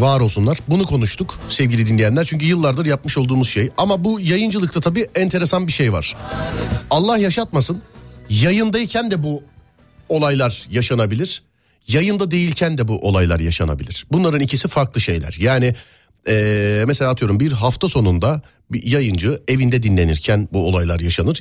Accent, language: native, Turkish